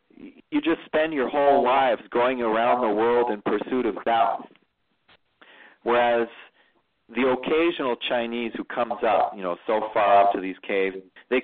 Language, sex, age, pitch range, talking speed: English, male, 40-59, 100-120 Hz, 155 wpm